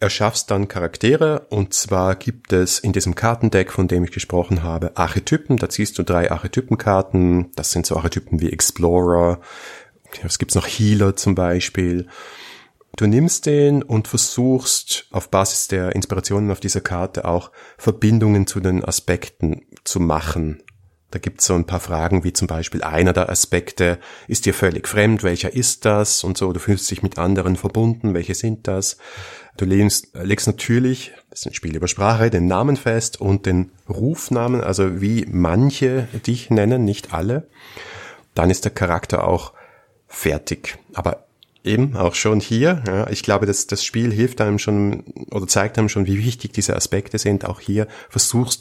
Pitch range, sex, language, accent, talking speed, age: 90-110 Hz, male, German, German, 170 wpm, 30-49